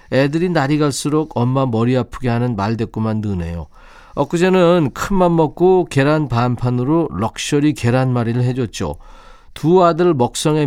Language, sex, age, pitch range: Korean, male, 40-59, 115-155 Hz